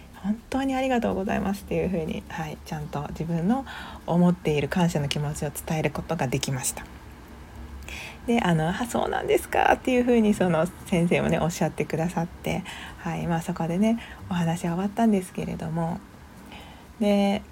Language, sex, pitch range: Japanese, female, 160-220 Hz